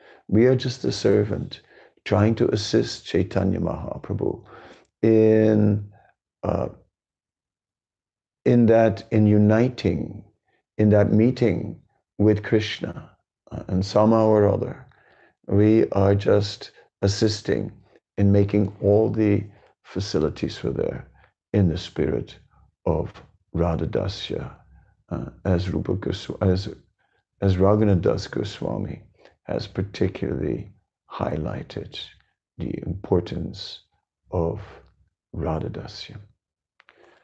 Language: English